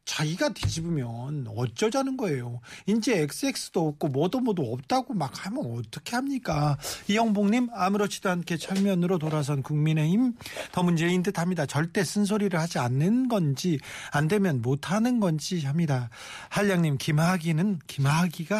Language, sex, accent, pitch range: Korean, male, native, 145-185 Hz